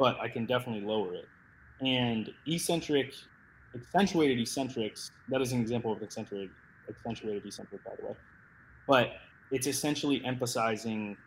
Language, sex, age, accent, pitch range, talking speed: English, male, 20-39, American, 105-130 Hz, 135 wpm